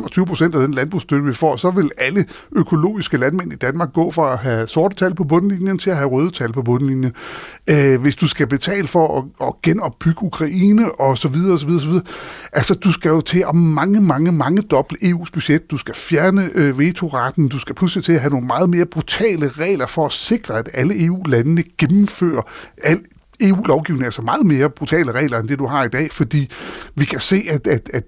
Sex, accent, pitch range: male, native, 130-175 Hz